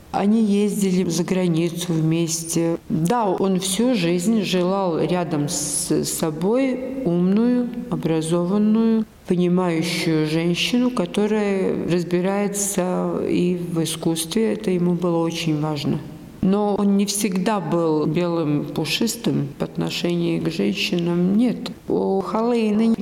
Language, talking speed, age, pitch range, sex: Russian, 105 wpm, 50-69, 165-200 Hz, female